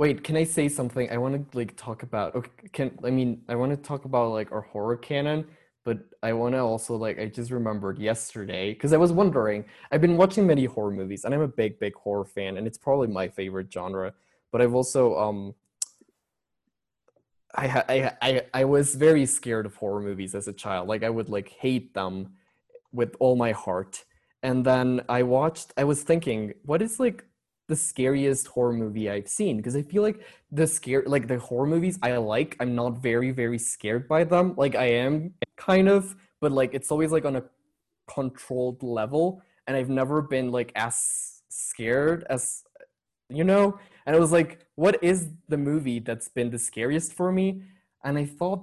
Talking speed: 195 wpm